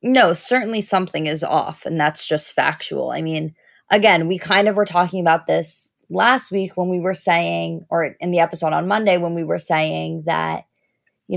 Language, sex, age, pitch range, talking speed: English, female, 20-39, 170-205 Hz, 195 wpm